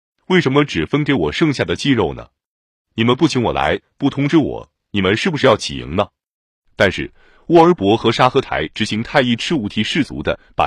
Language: Chinese